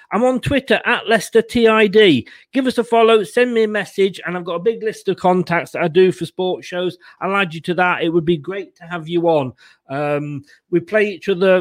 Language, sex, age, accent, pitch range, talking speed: English, male, 40-59, British, 150-195 Hz, 240 wpm